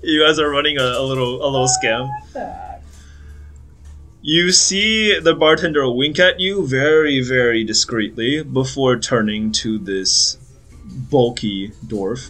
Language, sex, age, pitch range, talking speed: English, male, 20-39, 110-145 Hz, 125 wpm